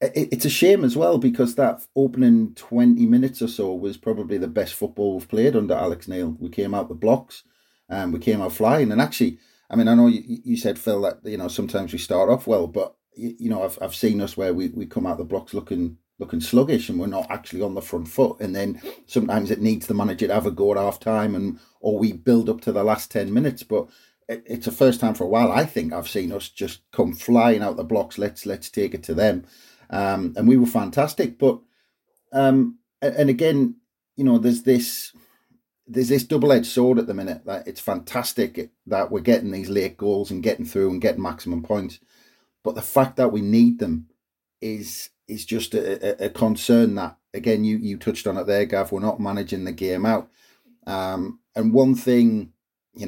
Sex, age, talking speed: male, 40-59, 215 wpm